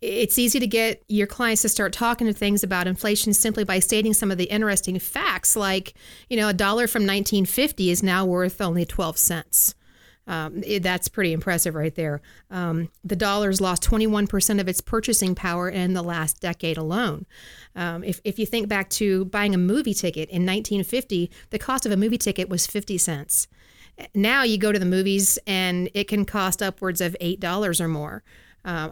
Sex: female